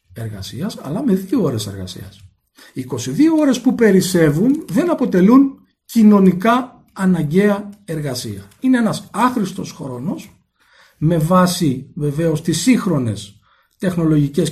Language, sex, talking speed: Greek, male, 110 wpm